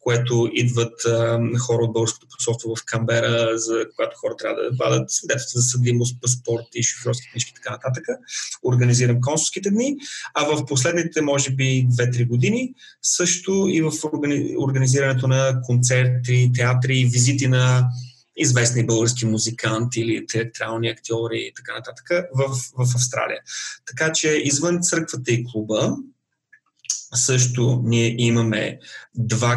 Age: 30-49